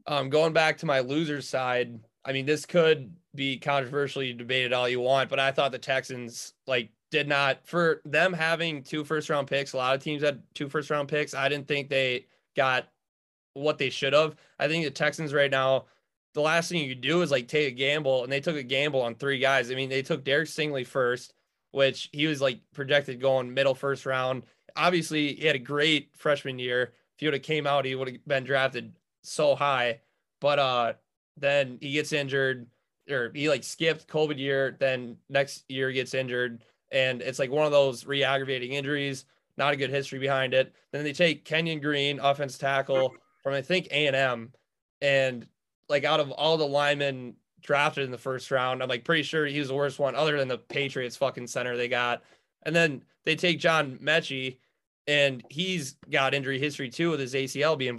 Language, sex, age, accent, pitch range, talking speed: English, male, 20-39, American, 130-150 Hz, 200 wpm